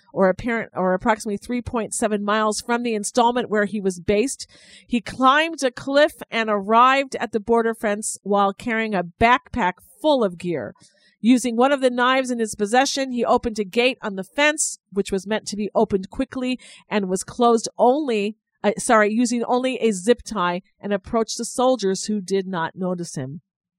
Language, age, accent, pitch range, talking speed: English, 50-69, American, 190-235 Hz, 180 wpm